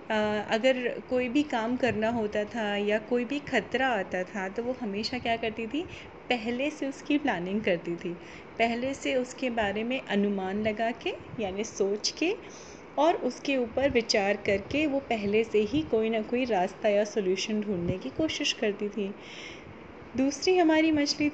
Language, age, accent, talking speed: Hindi, 30-49, native, 165 wpm